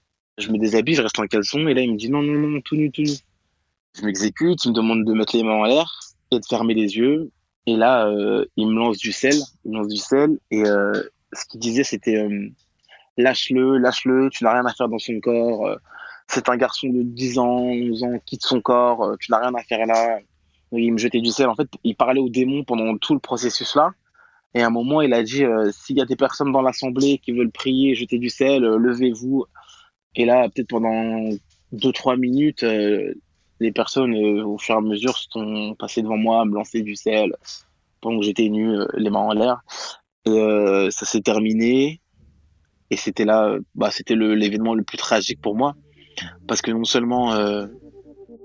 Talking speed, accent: 225 wpm, French